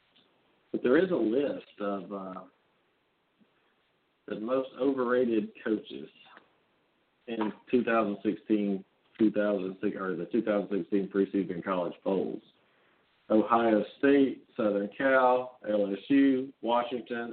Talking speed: 80 wpm